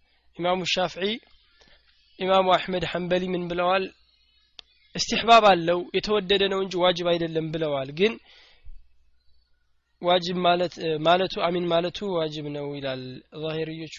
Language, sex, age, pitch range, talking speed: Amharic, male, 20-39, 155-190 Hz, 100 wpm